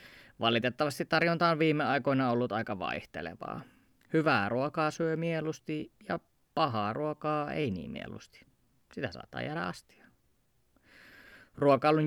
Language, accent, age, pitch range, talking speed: Finnish, native, 20-39, 115-155 Hz, 115 wpm